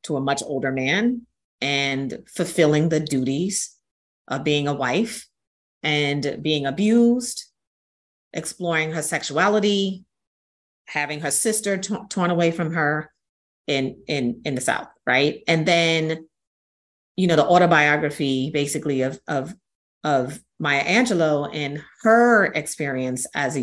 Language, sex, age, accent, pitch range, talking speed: English, female, 30-49, American, 145-180 Hz, 125 wpm